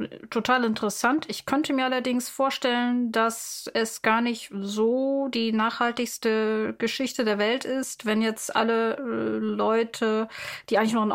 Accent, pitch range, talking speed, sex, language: German, 190-230 Hz, 140 wpm, female, German